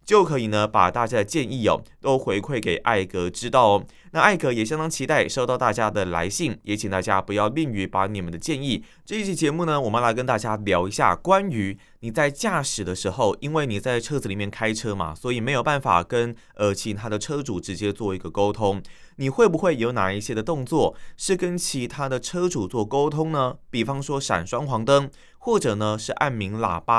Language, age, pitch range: Chinese, 20-39, 105-150 Hz